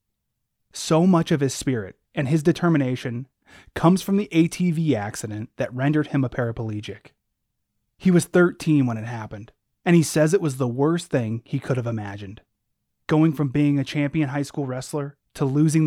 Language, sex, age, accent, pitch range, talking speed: English, male, 30-49, American, 120-155 Hz, 175 wpm